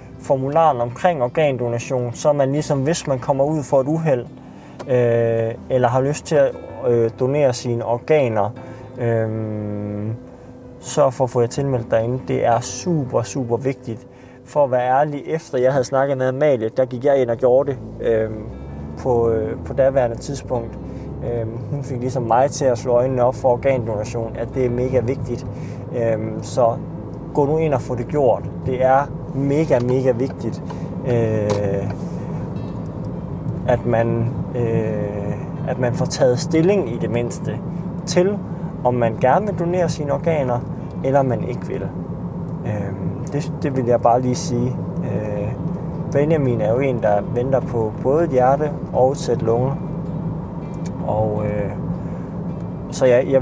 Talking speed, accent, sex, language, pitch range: 155 wpm, native, male, Danish, 115-145 Hz